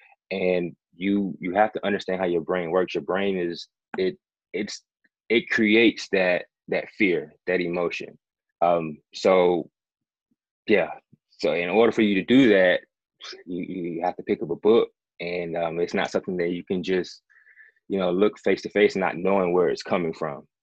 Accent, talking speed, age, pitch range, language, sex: American, 185 wpm, 20-39, 85-110 Hz, English, male